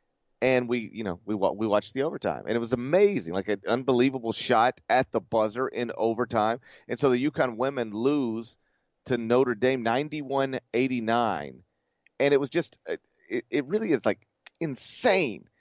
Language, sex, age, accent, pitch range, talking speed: English, male, 40-59, American, 110-170 Hz, 160 wpm